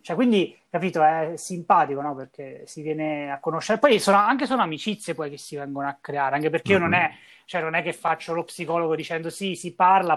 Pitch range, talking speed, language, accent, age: 145-170 Hz, 225 wpm, Italian, native, 20-39